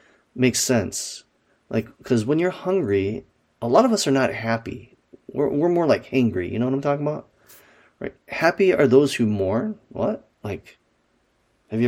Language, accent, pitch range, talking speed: English, American, 110-135 Hz, 175 wpm